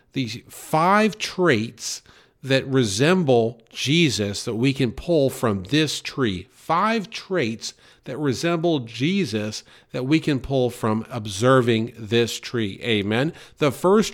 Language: English